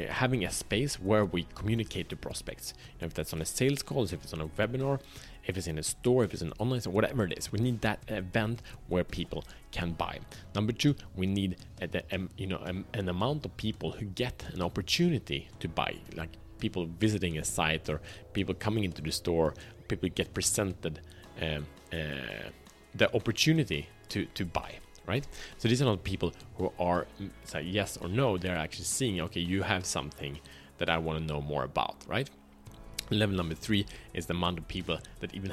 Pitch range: 85-115 Hz